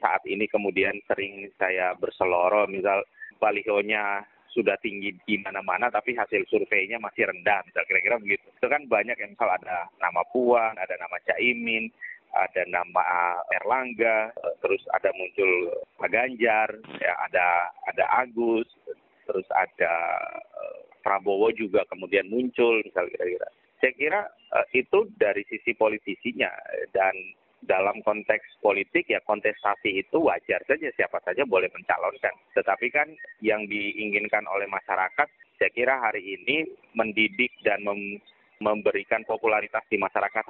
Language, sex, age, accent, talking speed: Indonesian, male, 30-49, native, 130 wpm